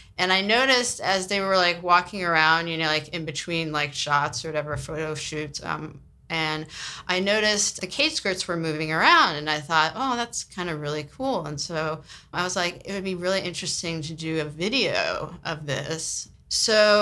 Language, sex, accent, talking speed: English, female, American, 195 wpm